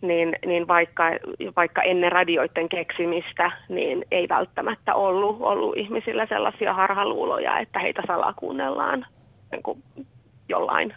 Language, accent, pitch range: Finnish, native, 170-185 Hz